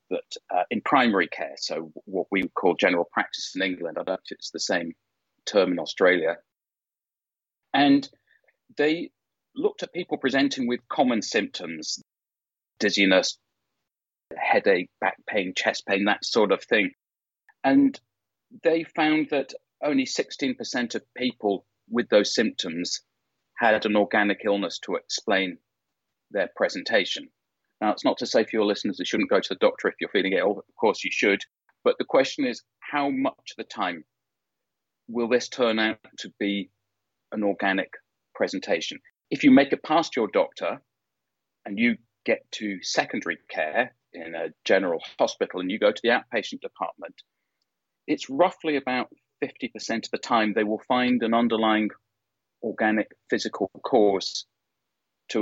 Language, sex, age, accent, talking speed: English, male, 40-59, British, 155 wpm